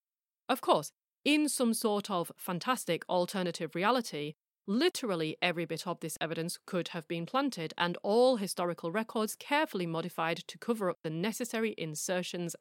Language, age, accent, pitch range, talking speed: English, 30-49, British, 175-235 Hz, 150 wpm